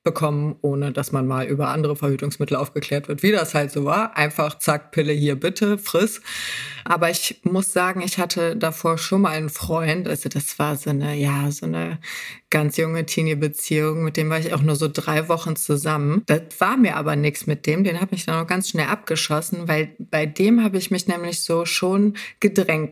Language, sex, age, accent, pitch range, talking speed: German, female, 30-49, German, 150-170 Hz, 205 wpm